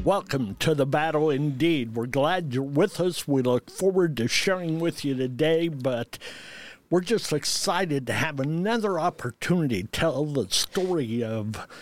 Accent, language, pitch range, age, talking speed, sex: American, English, 135-175 Hz, 60-79, 155 wpm, male